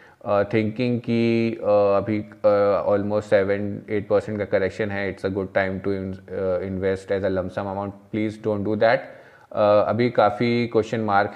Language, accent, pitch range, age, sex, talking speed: Hindi, native, 105-115 Hz, 20-39, male, 150 wpm